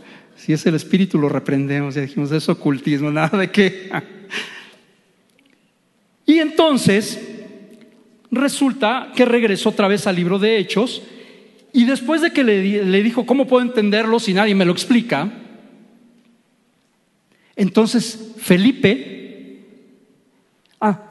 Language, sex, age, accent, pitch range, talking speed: Spanish, male, 50-69, Mexican, 185-235 Hz, 120 wpm